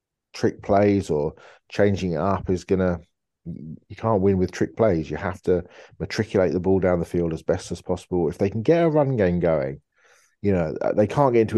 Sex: male